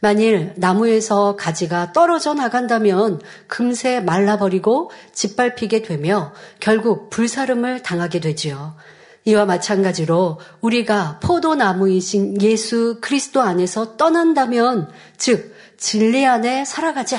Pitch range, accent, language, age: 185-260 Hz, native, Korean, 40-59